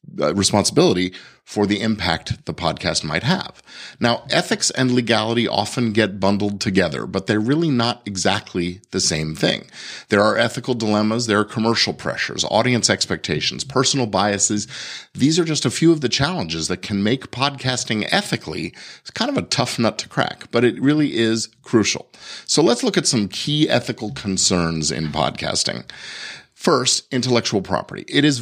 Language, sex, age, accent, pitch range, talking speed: English, male, 50-69, American, 95-125 Hz, 160 wpm